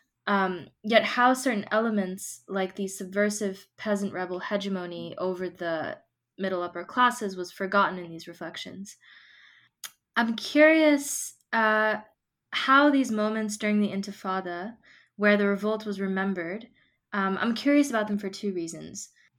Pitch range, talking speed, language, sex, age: 185-225 Hz, 135 wpm, English, female, 20-39